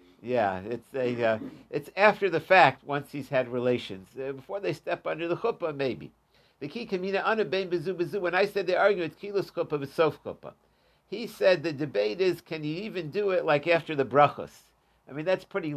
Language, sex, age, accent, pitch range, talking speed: English, male, 60-79, American, 130-175 Hz, 195 wpm